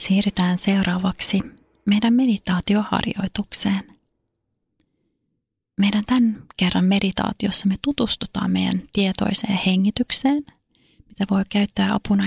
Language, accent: Finnish, native